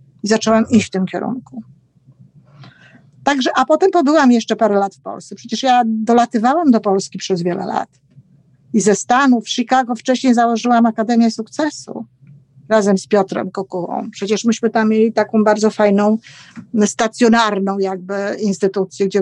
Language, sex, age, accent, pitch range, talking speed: Polish, female, 50-69, native, 195-240 Hz, 145 wpm